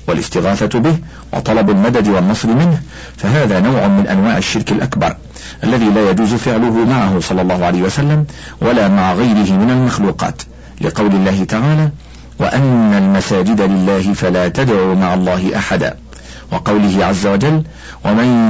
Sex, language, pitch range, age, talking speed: male, Arabic, 90-125 Hz, 50-69, 135 wpm